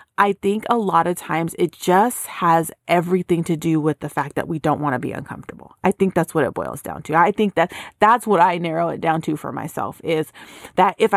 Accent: American